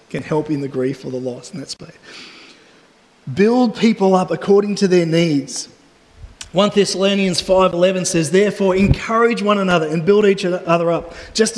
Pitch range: 185-240 Hz